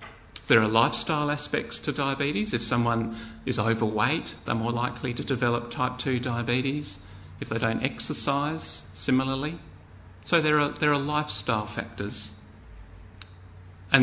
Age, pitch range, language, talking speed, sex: 40-59, 110-130 Hz, English, 130 wpm, male